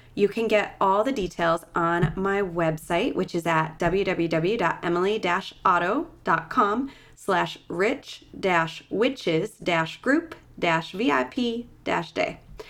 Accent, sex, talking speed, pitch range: American, female, 70 wpm, 170-220 Hz